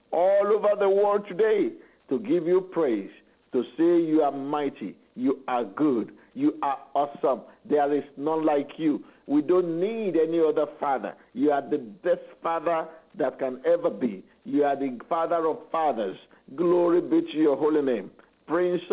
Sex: male